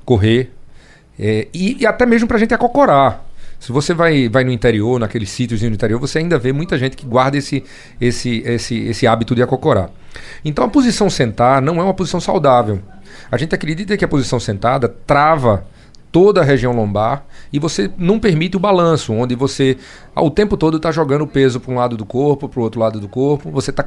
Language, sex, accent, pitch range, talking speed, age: Portuguese, male, Brazilian, 115-150 Hz, 210 wpm, 40-59